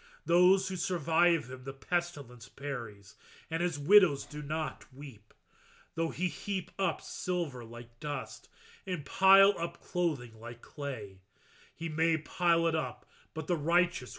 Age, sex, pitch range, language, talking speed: 30-49, male, 130-175 Hz, English, 145 wpm